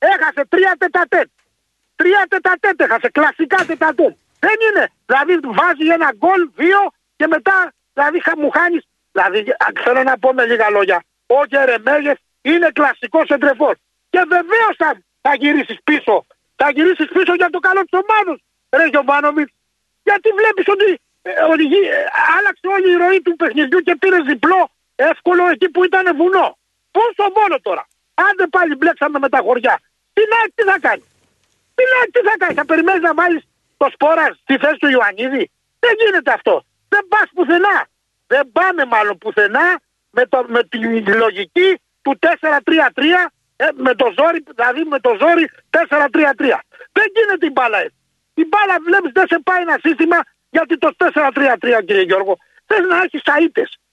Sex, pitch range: male, 285-375 Hz